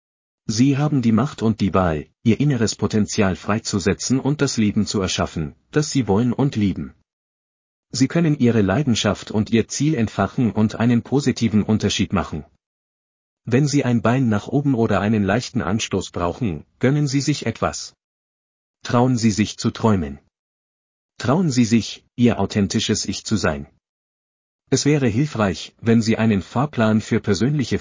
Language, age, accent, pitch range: German, 40-59, German, 95-120 Hz